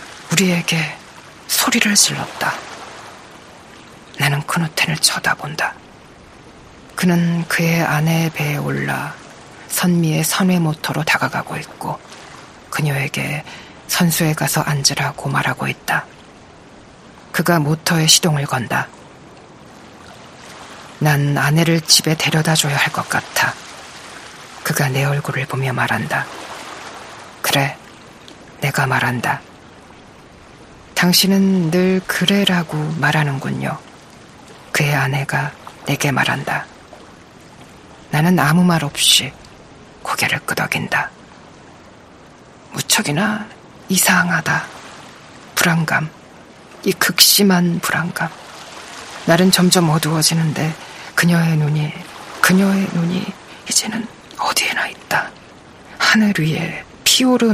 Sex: female